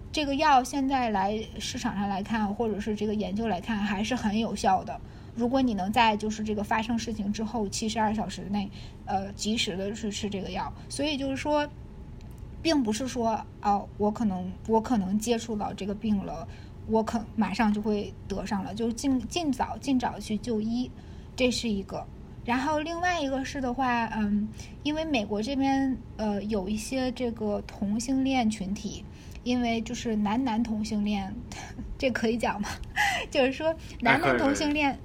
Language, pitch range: Chinese, 210-260 Hz